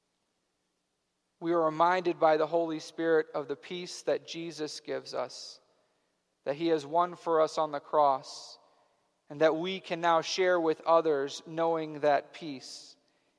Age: 40-59